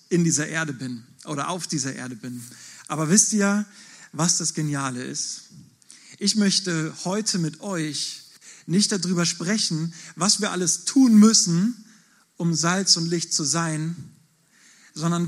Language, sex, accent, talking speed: German, male, German, 140 wpm